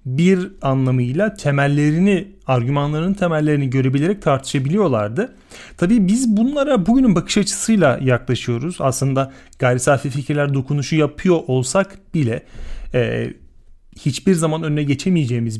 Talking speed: 105 wpm